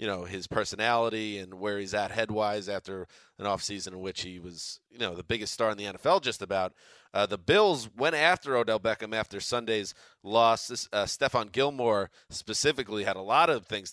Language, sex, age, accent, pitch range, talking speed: English, male, 30-49, American, 105-130 Hz, 195 wpm